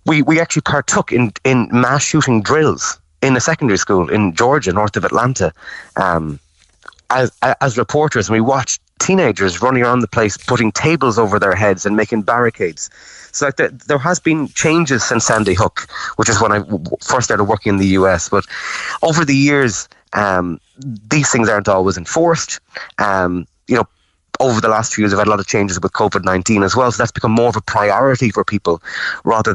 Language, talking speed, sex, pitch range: English, 195 wpm, male, 100-130 Hz